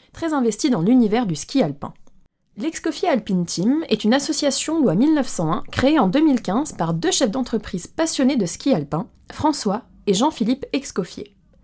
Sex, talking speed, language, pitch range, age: female, 155 wpm, French, 190-270 Hz, 20-39